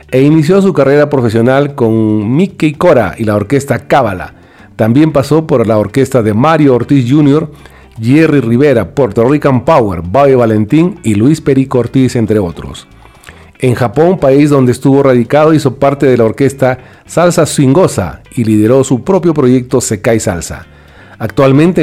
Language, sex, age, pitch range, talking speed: Spanish, male, 40-59, 115-145 Hz, 150 wpm